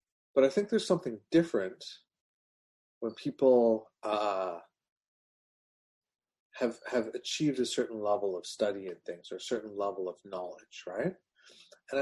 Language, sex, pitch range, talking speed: English, male, 105-130 Hz, 135 wpm